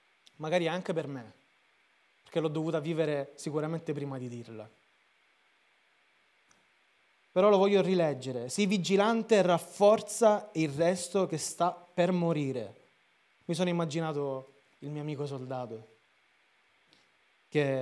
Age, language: 30-49, Italian